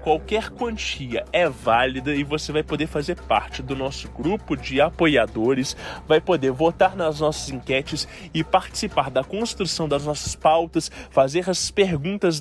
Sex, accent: male, Brazilian